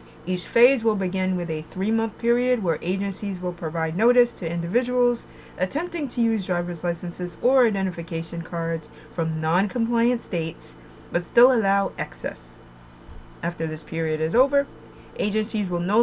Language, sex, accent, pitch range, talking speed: English, female, American, 165-215 Hz, 140 wpm